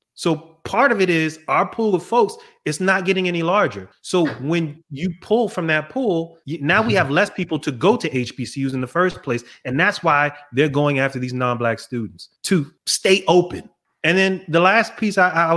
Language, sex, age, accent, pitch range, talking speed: English, male, 30-49, American, 125-170 Hz, 205 wpm